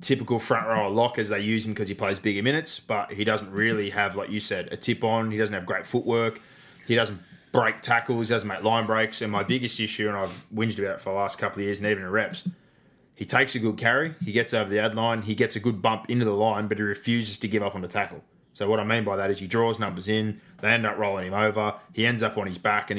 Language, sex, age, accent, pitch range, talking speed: English, male, 20-39, Australian, 100-115 Hz, 285 wpm